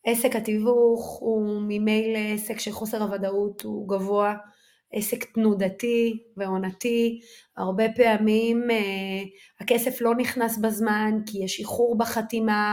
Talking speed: 105 wpm